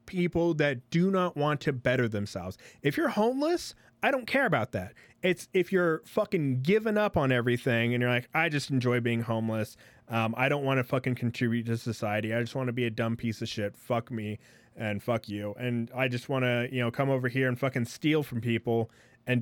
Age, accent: 30-49, American